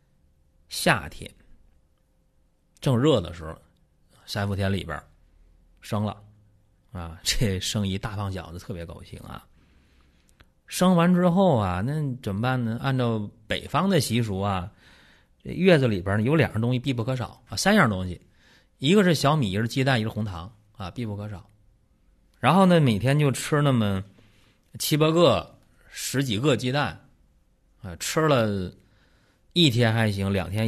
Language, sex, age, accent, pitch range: Chinese, male, 30-49, native, 90-120 Hz